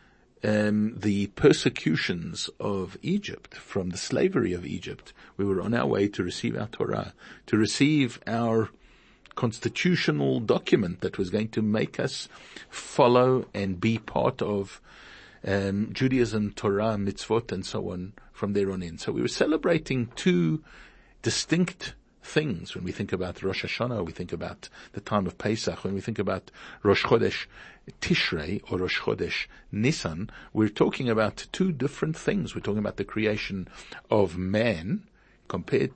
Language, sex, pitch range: English, male, 95-120 Hz